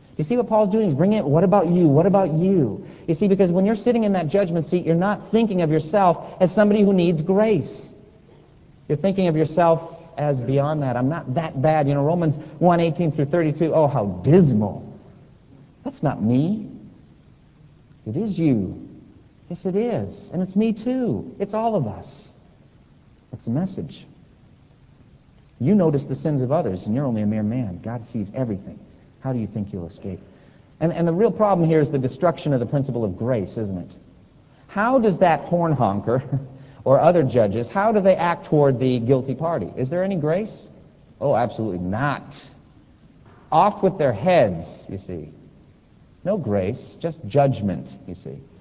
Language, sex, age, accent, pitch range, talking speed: English, male, 40-59, American, 125-180 Hz, 180 wpm